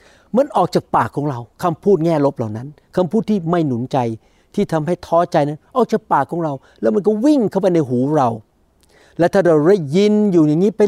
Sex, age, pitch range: male, 60-79, 145-190 Hz